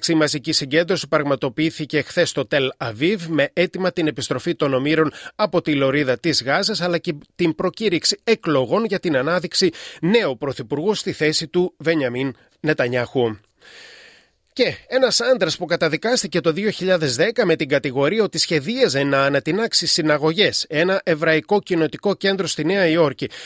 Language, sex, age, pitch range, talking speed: Greek, male, 30-49, 145-195 Hz, 145 wpm